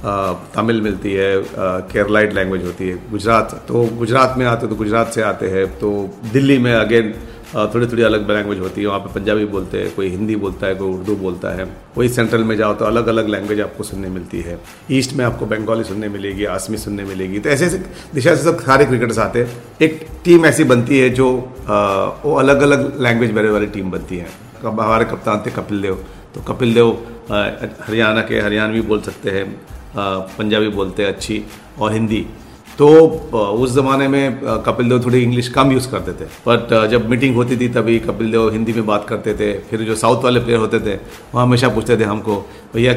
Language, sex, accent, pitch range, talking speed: Hindi, male, native, 100-120 Hz, 200 wpm